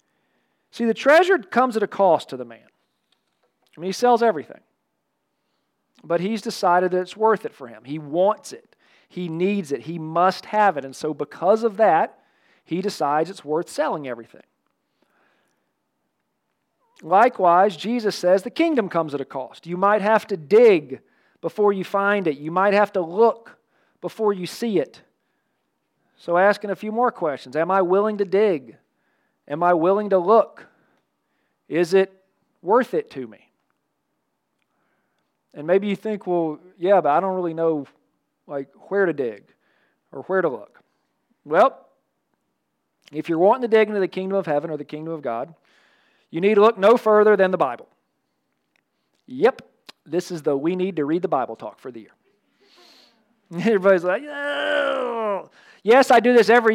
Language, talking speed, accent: English, 170 wpm, American